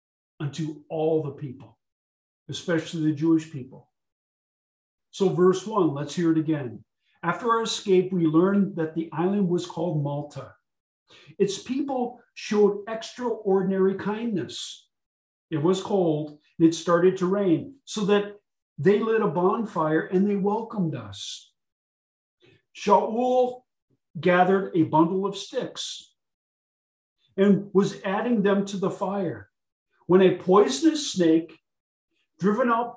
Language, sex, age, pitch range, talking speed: English, male, 50-69, 160-205 Hz, 125 wpm